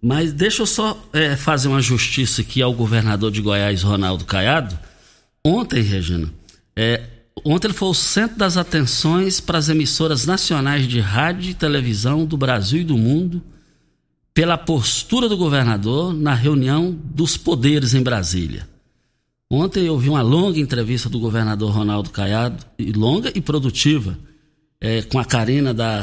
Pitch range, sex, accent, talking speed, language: 115-170 Hz, male, Brazilian, 145 wpm, Portuguese